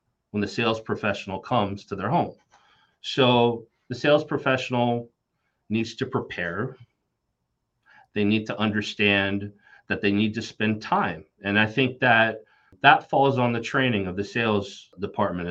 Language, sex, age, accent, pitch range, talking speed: English, male, 30-49, American, 100-130 Hz, 145 wpm